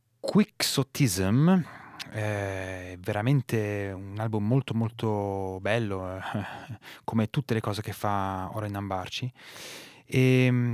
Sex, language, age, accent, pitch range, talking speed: male, Italian, 20-39, native, 100-120 Hz, 105 wpm